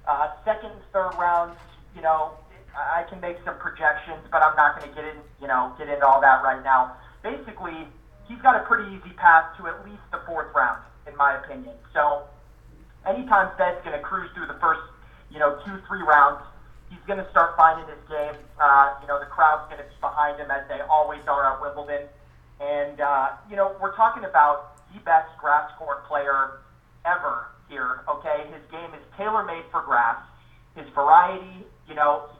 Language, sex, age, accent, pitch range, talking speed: English, male, 30-49, American, 145-170 Hz, 195 wpm